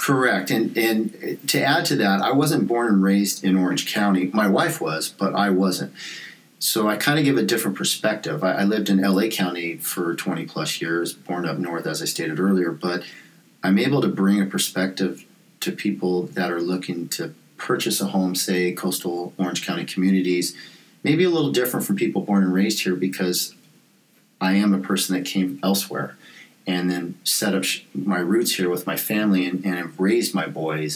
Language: English